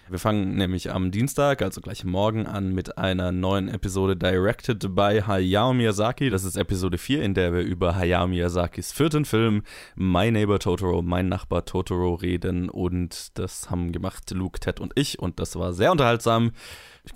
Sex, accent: male, German